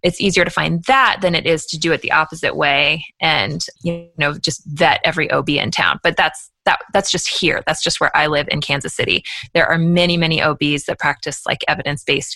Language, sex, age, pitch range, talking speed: English, female, 20-39, 155-185 Hz, 225 wpm